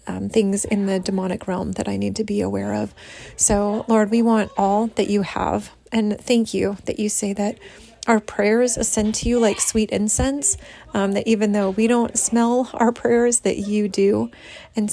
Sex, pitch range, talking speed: female, 200-225 Hz, 195 wpm